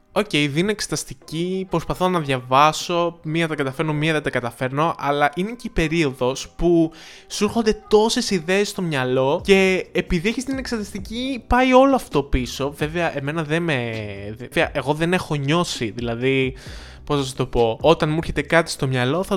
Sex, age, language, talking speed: male, 20-39, Greek, 175 wpm